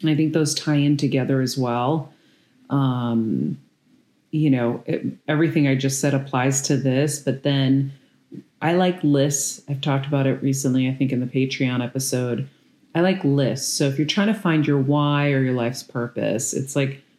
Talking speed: 180 wpm